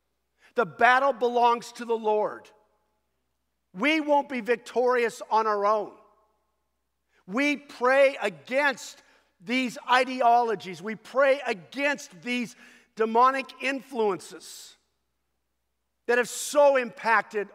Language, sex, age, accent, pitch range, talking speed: English, male, 50-69, American, 185-250 Hz, 95 wpm